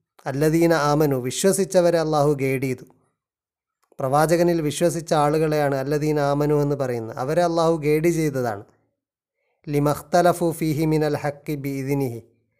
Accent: native